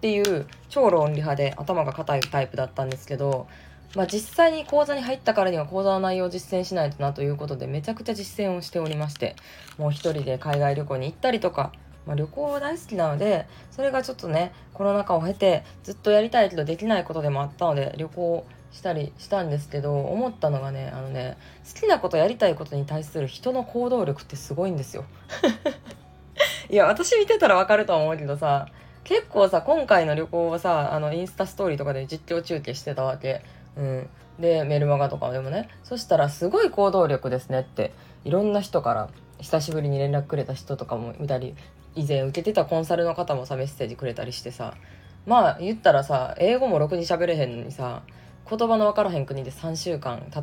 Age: 20-39